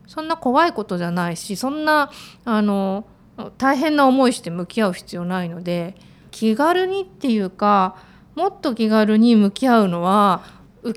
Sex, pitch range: female, 185-270 Hz